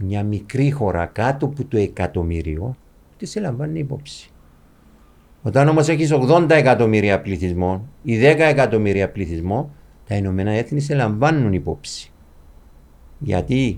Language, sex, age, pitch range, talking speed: Greek, male, 50-69, 75-115 Hz, 120 wpm